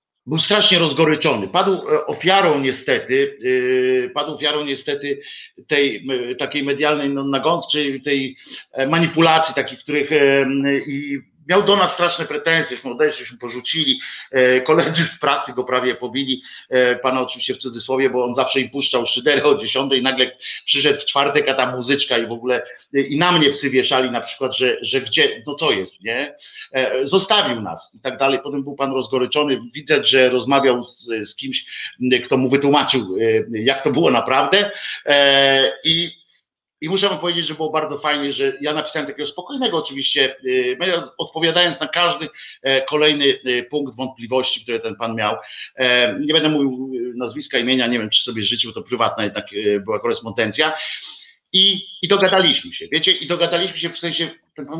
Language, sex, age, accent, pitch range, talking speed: Polish, male, 50-69, native, 130-170 Hz, 160 wpm